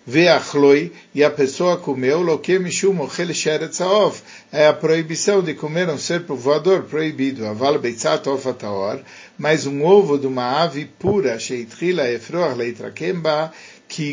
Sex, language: male, Turkish